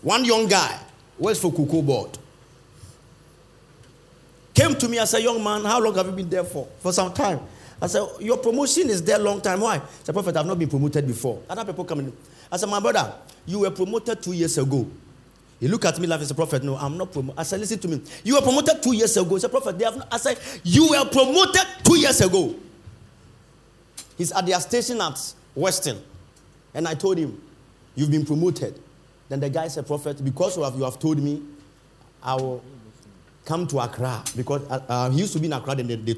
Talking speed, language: 220 wpm, English